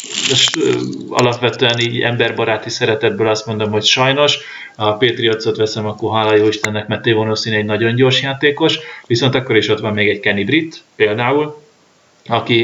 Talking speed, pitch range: 145 wpm, 110-120 Hz